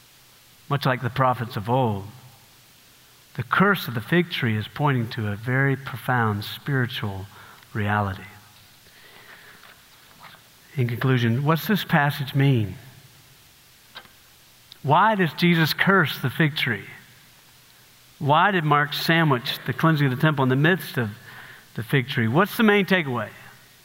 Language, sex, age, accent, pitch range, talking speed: English, male, 50-69, American, 120-155 Hz, 135 wpm